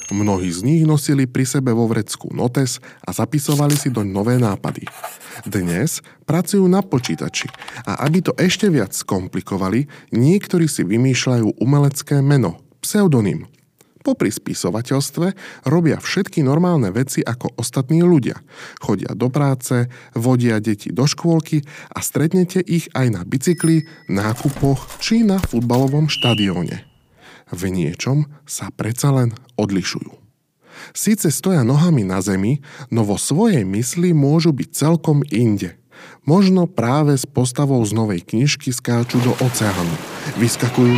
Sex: male